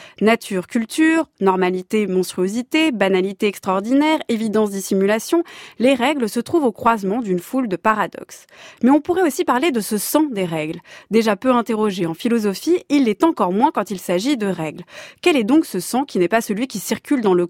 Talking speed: 190 wpm